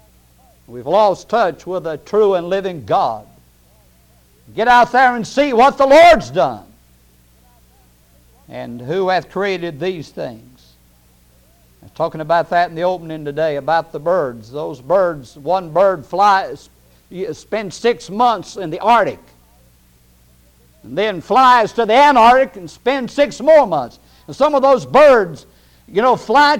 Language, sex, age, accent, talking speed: English, male, 60-79, American, 145 wpm